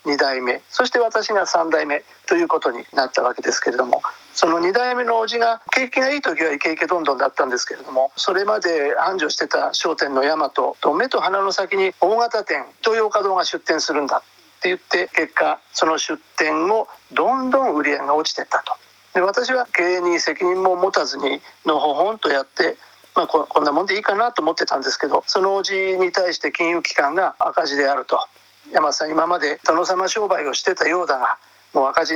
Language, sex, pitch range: Japanese, male, 160-235 Hz